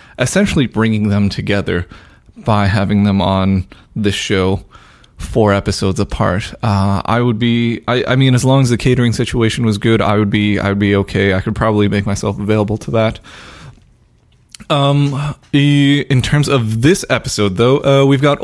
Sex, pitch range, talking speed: male, 110-140 Hz, 170 wpm